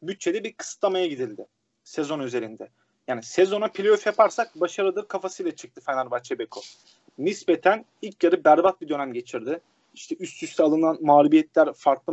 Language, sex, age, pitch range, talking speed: Turkish, male, 30-49, 160-220 Hz, 140 wpm